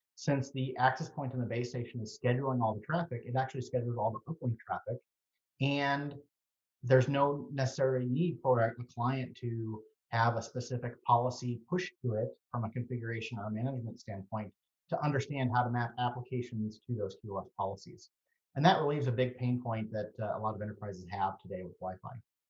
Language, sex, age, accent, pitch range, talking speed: English, male, 30-49, American, 115-135 Hz, 190 wpm